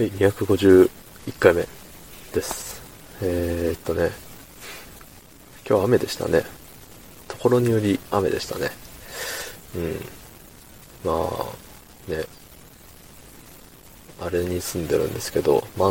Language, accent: Japanese, native